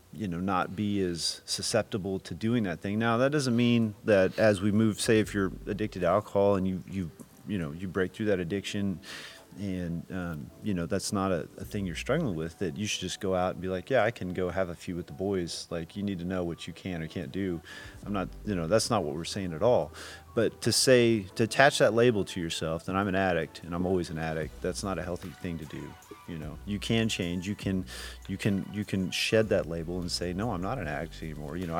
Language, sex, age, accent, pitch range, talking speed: English, male, 30-49, American, 90-110 Hz, 255 wpm